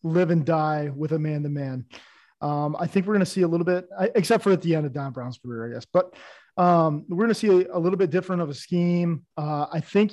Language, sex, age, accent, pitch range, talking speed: English, male, 20-39, American, 145-175 Hz, 275 wpm